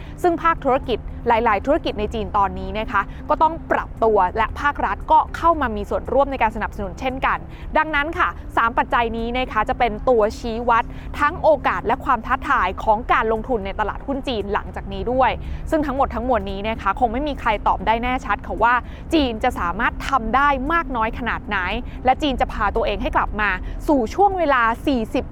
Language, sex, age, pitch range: Thai, female, 20-39, 220-285 Hz